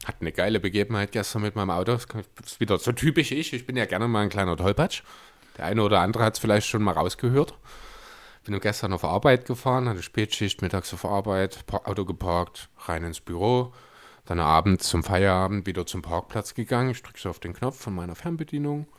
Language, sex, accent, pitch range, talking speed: German, male, German, 90-125 Hz, 205 wpm